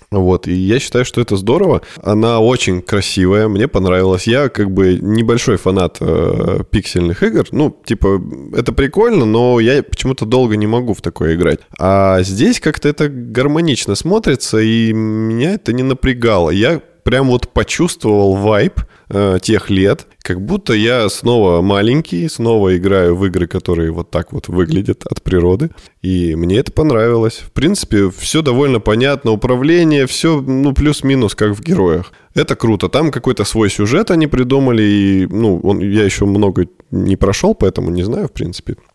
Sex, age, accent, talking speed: male, 20-39, native, 160 wpm